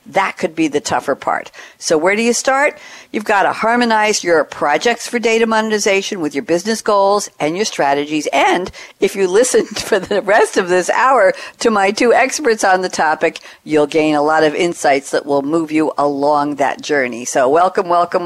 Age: 60-79